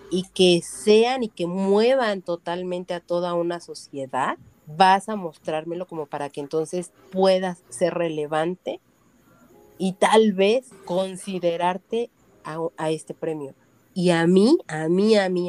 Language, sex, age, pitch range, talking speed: Spanish, female, 40-59, 155-185 Hz, 140 wpm